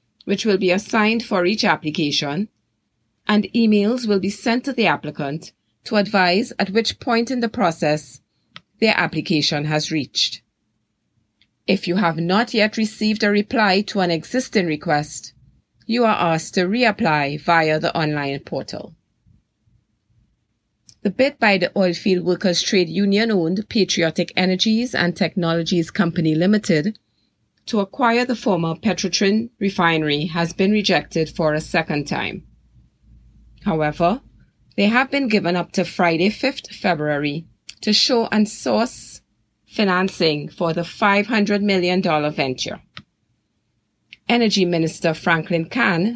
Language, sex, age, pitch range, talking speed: English, female, 30-49, 160-210 Hz, 130 wpm